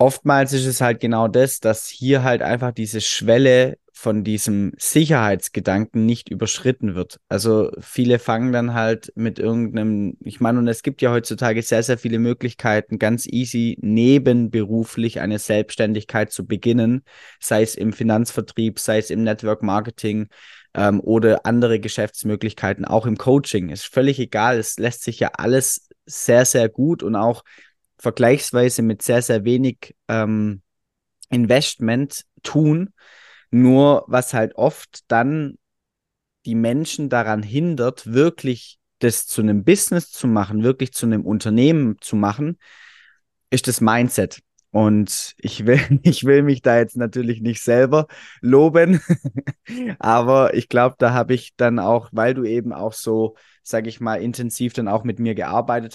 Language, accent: German, German